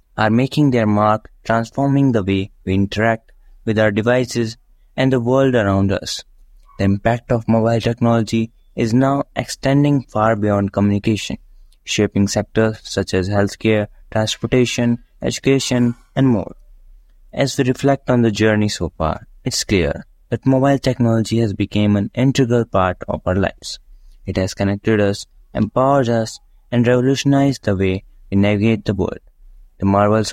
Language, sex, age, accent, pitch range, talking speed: English, male, 20-39, Indian, 100-125 Hz, 145 wpm